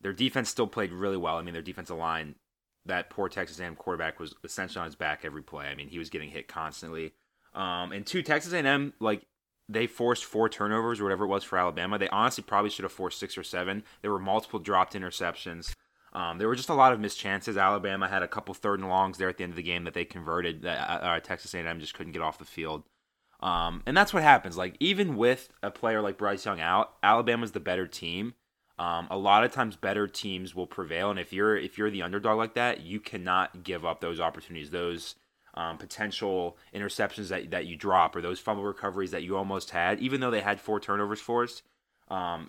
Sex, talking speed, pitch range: male, 230 wpm, 85-110 Hz